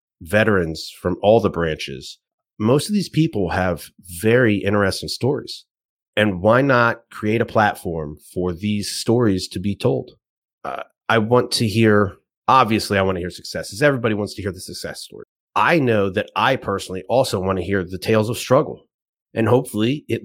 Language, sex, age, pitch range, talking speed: English, male, 30-49, 100-120 Hz, 175 wpm